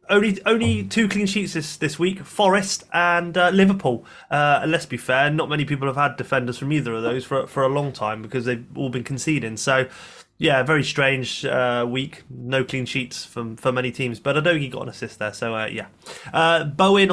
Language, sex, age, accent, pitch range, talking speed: English, male, 20-39, British, 120-155 Hz, 220 wpm